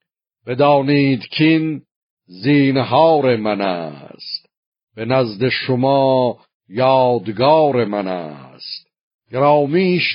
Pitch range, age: 120-145 Hz, 60-79